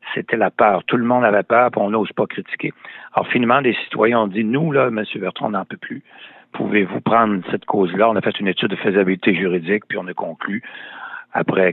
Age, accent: 60-79, French